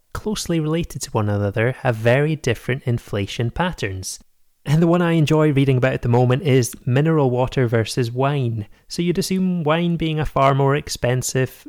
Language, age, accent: English, 30-49, British